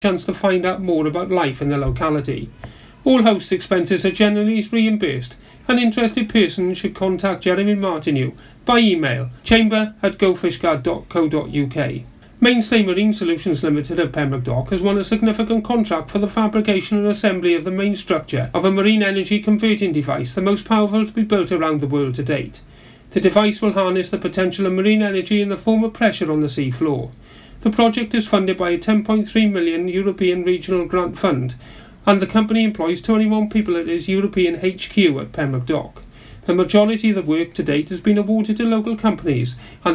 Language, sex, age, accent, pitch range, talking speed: English, male, 40-59, British, 155-210 Hz, 185 wpm